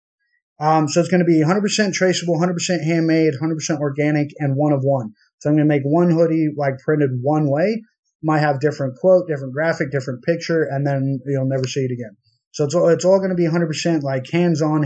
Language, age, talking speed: English, 20-39, 210 wpm